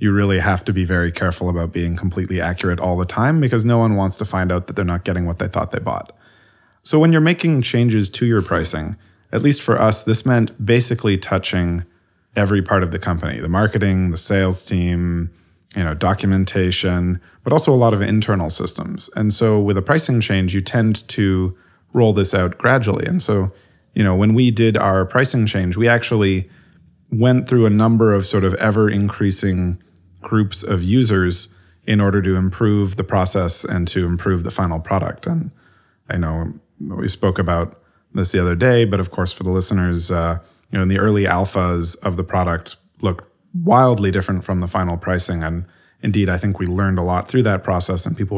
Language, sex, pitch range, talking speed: English, male, 90-110 Hz, 200 wpm